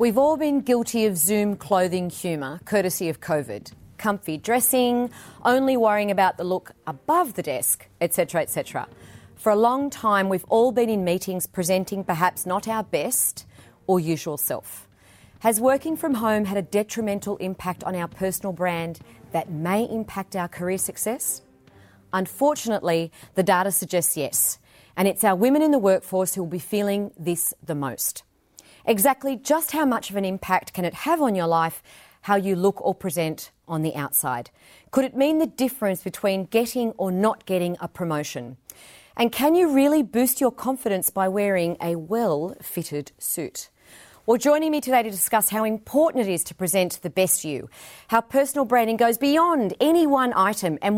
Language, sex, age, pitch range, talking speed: English, female, 30-49, 175-235 Hz, 170 wpm